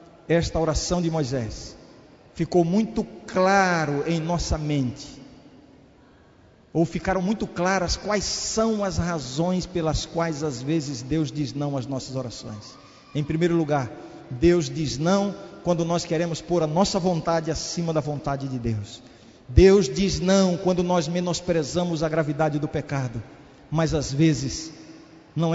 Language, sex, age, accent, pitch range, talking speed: Portuguese, male, 50-69, Brazilian, 150-185 Hz, 140 wpm